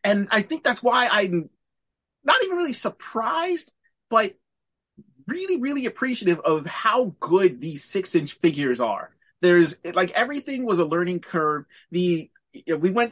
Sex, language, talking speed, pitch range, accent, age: male, English, 150 wpm, 155-205 Hz, American, 30-49